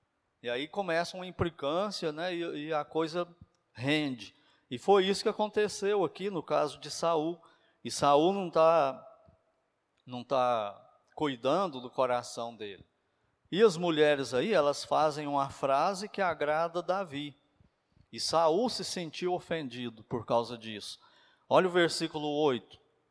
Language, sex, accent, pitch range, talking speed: Portuguese, male, Brazilian, 145-185 Hz, 140 wpm